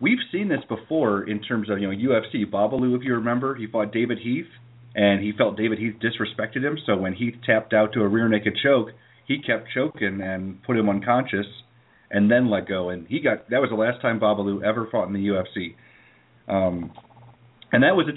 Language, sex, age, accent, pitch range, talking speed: English, male, 40-59, American, 100-120 Hz, 220 wpm